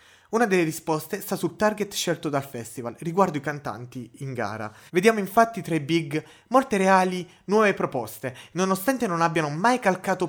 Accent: native